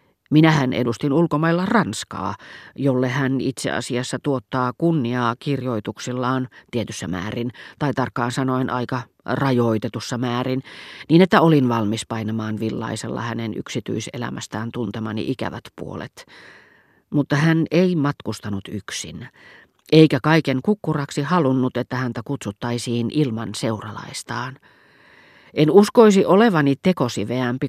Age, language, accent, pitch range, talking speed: 40-59, Finnish, native, 110-140 Hz, 105 wpm